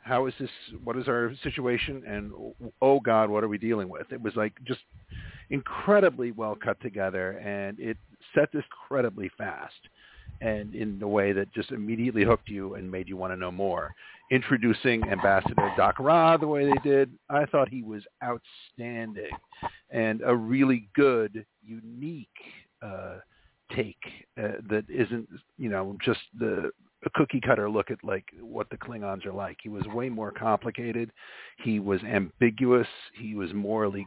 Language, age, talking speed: English, 50-69, 165 wpm